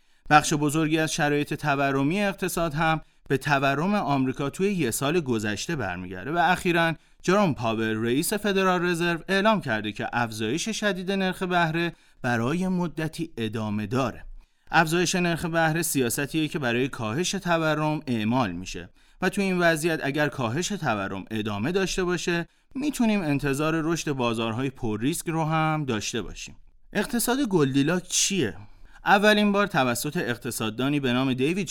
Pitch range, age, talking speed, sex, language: 120-180 Hz, 30-49, 140 wpm, male, Persian